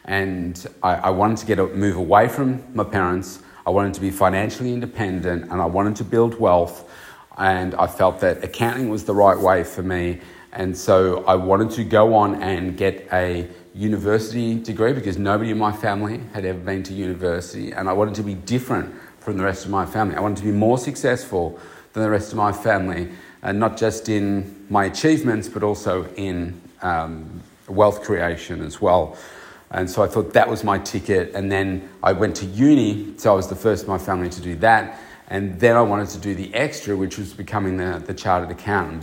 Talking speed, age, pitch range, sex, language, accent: 210 wpm, 40-59, 95-110 Hz, male, English, Australian